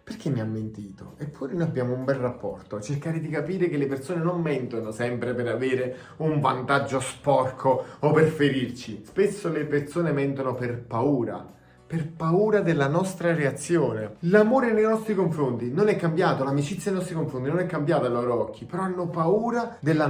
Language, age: Italian, 30-49